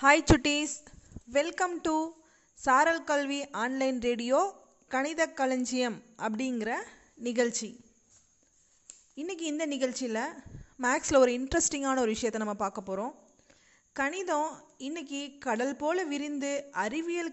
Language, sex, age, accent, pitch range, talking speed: Tamil, female, 20-39, native, 240-300 Hz, 100 wpm